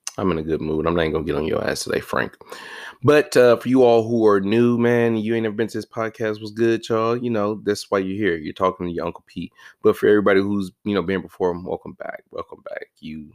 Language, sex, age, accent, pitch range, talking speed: English, male, 20-39, American, 90-115 Hz, 270 wpm